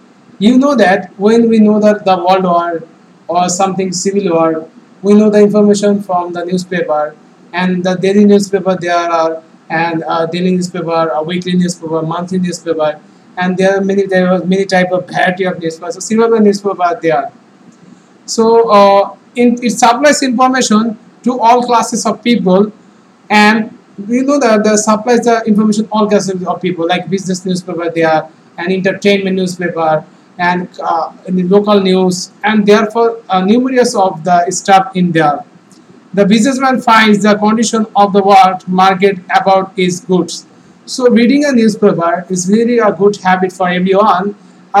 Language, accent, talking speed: English, Indian, 155 wpm